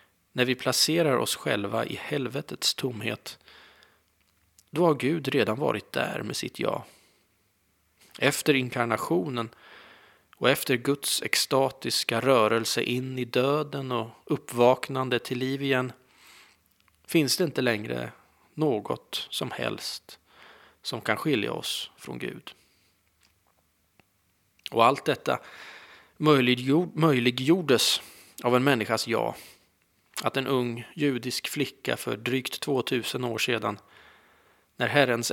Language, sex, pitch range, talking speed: Swedish, male, 95-135 Hz, 110 wpm